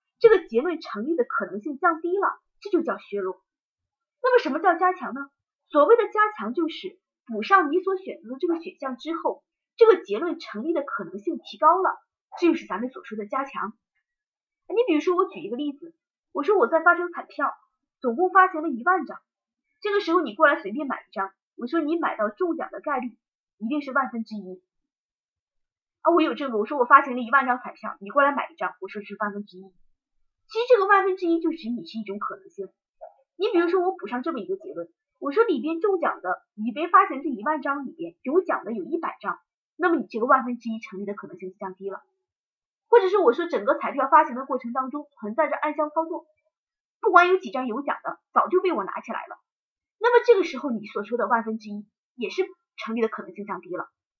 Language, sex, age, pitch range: Chinese, female, 20-39, 245-365 Hz